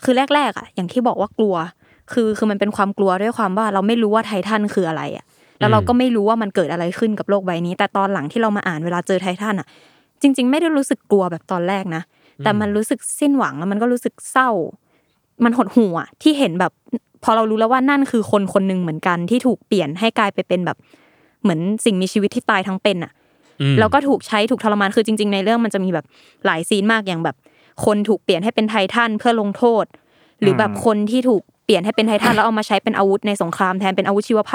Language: Thai